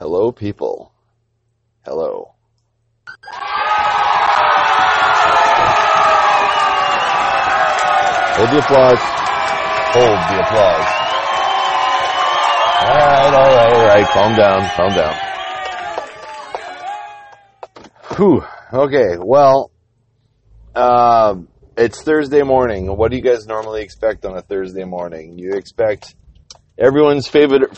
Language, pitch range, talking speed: English, 90-125 Hz, 90 wpm